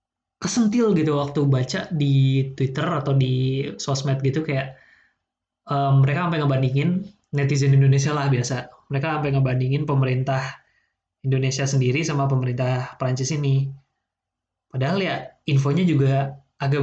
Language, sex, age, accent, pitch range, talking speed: Indonesian, male, 20-39, native, 135-150 Hz, 120 wpm